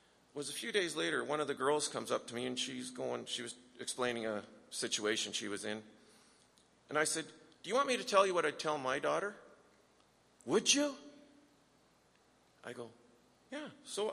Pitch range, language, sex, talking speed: 120-150 Hz, English, male, 190 wpm